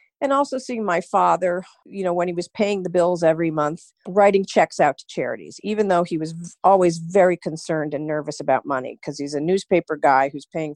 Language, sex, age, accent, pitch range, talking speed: English, female, 50-69, American, 155-200 Hz, 210 wpm